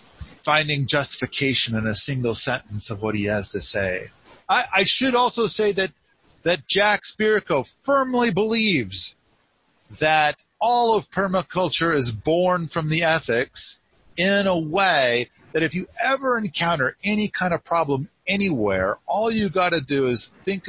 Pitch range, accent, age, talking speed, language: 130-185 Hz, American, 40-59, 150 wpm, English